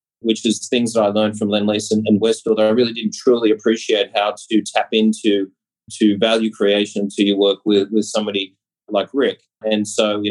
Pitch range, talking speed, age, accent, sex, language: 105-115 Hz, 200 wpm, 30-49, Australian, male, English